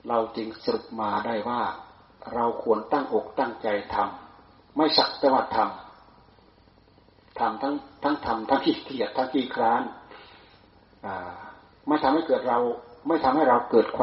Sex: male